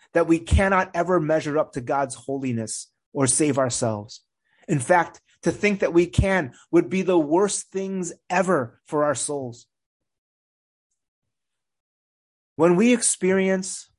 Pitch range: 120-160 Hz